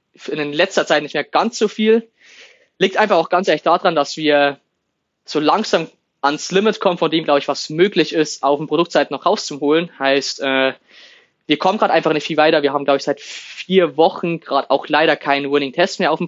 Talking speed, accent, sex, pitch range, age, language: 210 wpm, German, male, 145-175 Hz, 20-39, German